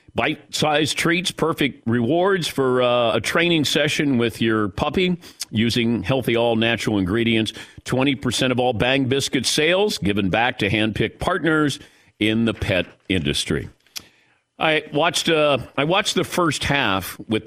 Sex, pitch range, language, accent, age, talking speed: male, 115-165 Hz, English, American, 50-69, 130 wpm